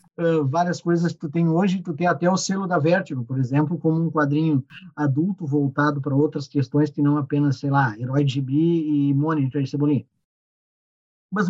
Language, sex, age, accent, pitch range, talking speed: Portuguese, male, 50-69, Brazilian, 150-195 Hz, 195 wpm